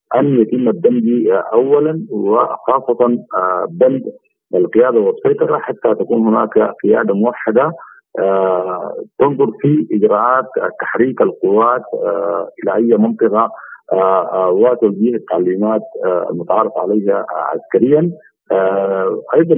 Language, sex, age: Arabic, male, 50-69